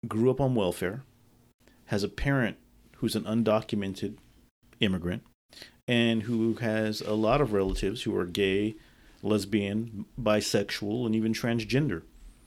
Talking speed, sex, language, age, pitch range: 125 wpm, male, English, 40-59, 100-115 Hz